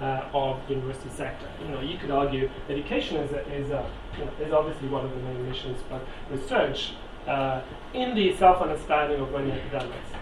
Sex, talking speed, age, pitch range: male, 200 wpm, 30-49, 140-170 Hz